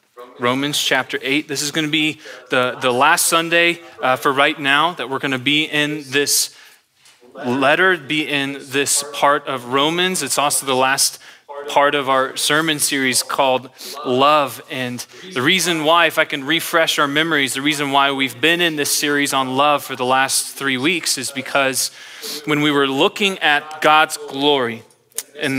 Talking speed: 175 wpm